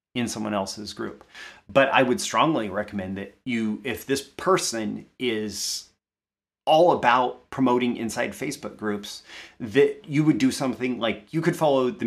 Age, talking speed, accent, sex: 30-49, 155 wpm, American, male